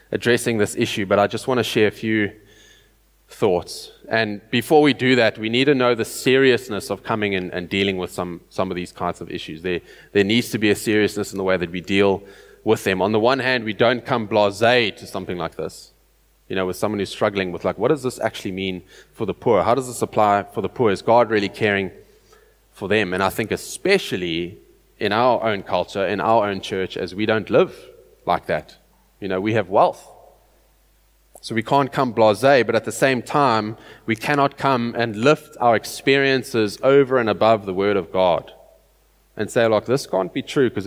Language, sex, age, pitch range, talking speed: English, male, 20-39, 95-125 Hz, 215 wpm